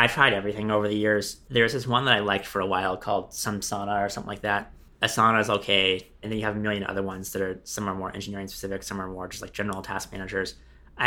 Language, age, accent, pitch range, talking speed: English, 20-39, American, 95-105 Hz, 260 wpm